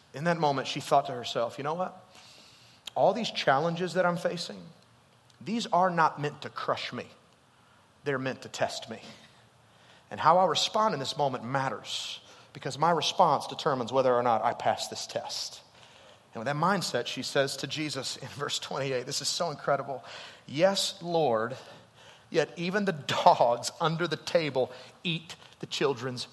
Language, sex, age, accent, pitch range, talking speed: English, male, 30-49, American, 135-180 Hz, 170 wpm